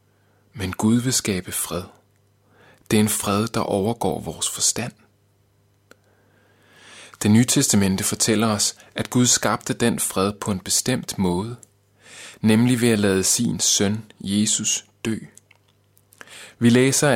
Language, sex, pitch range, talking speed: Danish, male, 100-115 Hz, 130 wpm